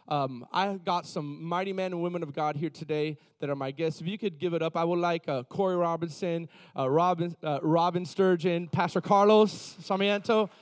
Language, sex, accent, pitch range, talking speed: English, male, American, 155-195 Hz, 210 wpm